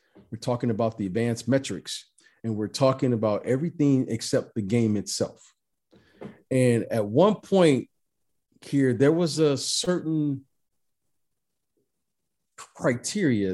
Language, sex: English, male